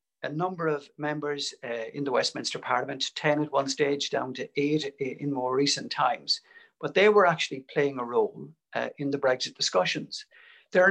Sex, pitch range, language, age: male, 145-210 Hz, English, 60-79